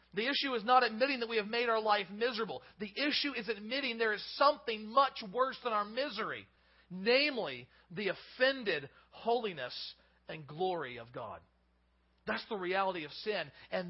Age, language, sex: 40-59, English, male